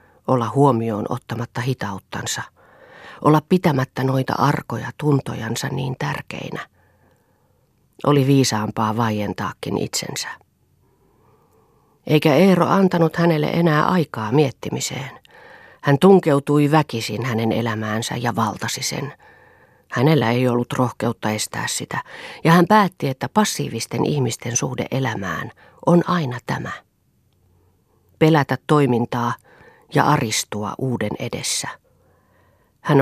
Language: Finnish